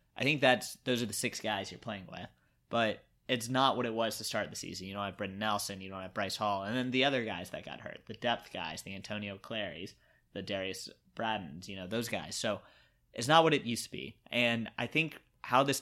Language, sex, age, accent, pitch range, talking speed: English, male, 20-39, American, 105-120 Hz, 245 wpm